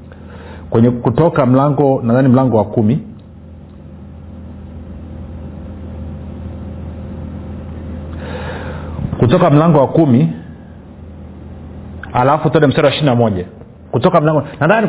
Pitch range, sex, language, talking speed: 110-170 Hz, male, Swahili, 75 wpm